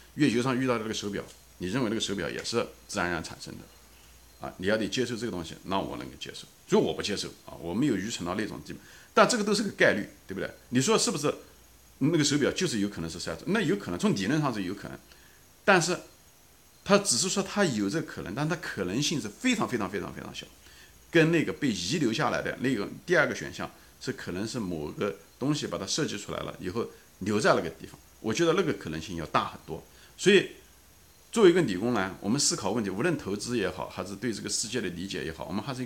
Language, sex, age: Chinese, male, 50-69